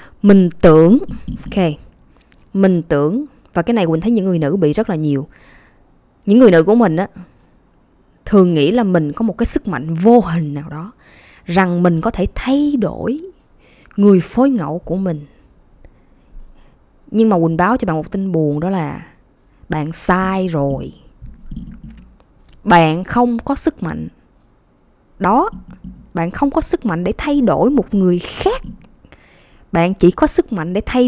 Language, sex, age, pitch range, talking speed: Vietnamese, female, 20-39, 165-230 Hz, 160 wpm